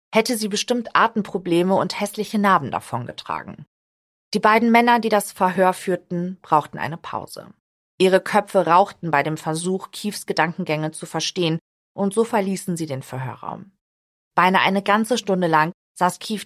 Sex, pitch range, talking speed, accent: female, 160-200 Hz, 150 wpm, German